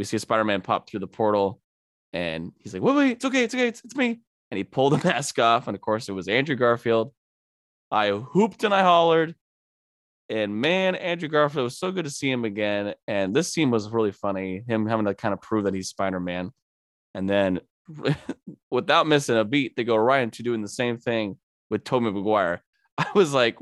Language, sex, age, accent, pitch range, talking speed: English, male, 20-39, American, 95-135 Hz, 215 wpm